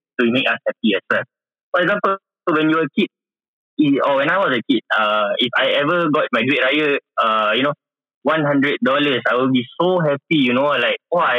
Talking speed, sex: 220 wpm, male